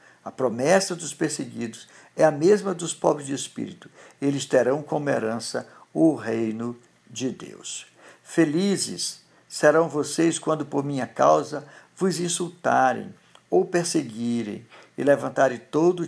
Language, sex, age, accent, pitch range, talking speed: Portuguese, male, 60-79, Brazilian, 120-160 Hz, 125 wpm